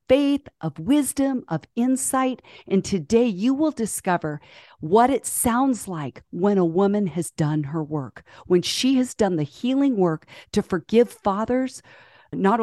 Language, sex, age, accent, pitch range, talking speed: English, female, 40-59, American, 170-245 Hz, 150 wpm